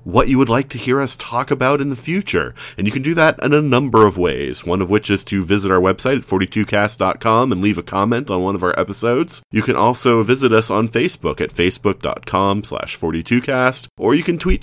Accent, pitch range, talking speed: American, 95-115 Hz, 230 wpm